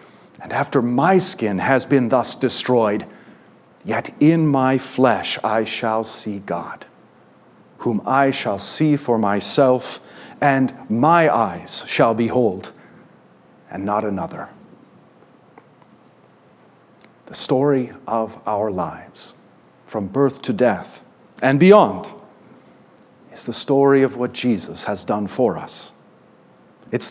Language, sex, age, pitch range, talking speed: English, male, 50-69, 110-155 Hz, 115 wpm